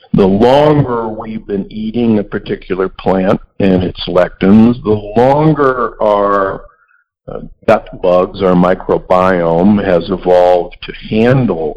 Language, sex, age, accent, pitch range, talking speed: English, male, 60-79, American, 95-140 Hz, 110 wpm